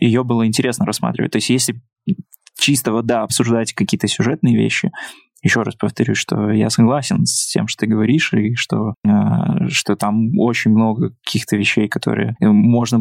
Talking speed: 160 wpm